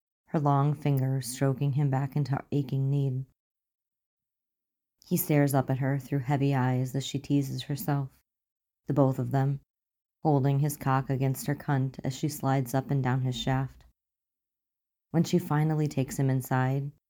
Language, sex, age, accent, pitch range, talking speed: English, female, 30-49, American, 130-145 Hz, 160 wpm